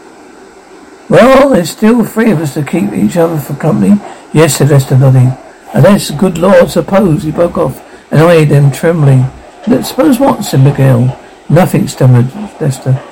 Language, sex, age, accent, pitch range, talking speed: English, male, 60-79, British, 140-205 Hz, 160 wpm